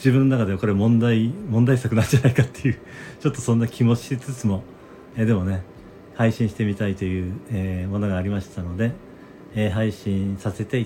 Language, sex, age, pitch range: Japanese, male, 40-59, 100-125 Hz